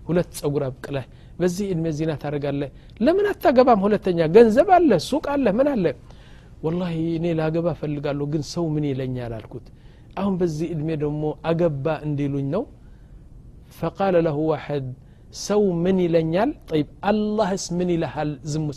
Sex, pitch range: male, 145-190 Hz